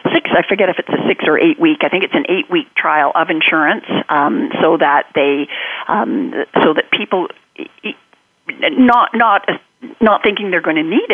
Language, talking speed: English, 190 wpm